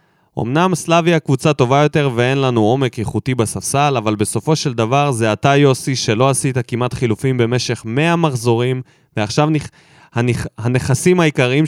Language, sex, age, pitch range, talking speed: Hebrew, male, 20-39, 115-155 Hz, 155 wpm